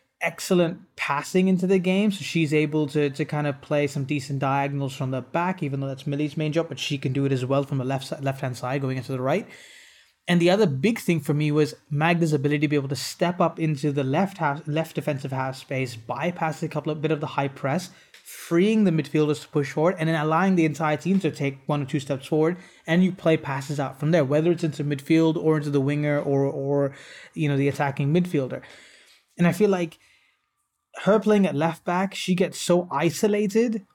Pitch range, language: 140-170 Hz, English